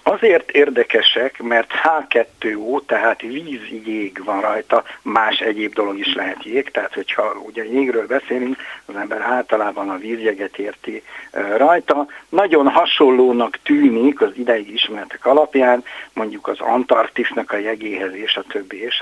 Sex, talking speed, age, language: male, 135 wpm, 60-79, Hungarian